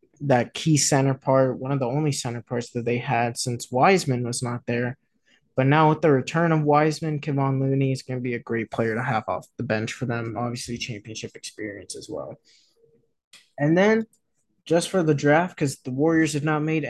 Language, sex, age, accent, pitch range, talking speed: English, male, 20-39, American, 125-155 Hz, 205 wpm